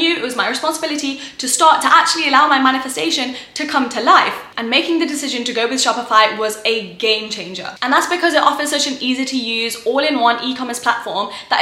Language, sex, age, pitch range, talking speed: English, female, 10-29, 225-285 Hz, 210 wpm